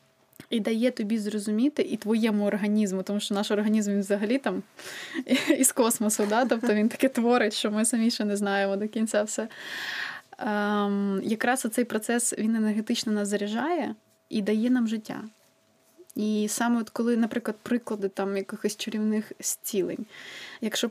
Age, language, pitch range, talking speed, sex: 20-39, Ukrainian, 205-240 Hz, 150 wpm, female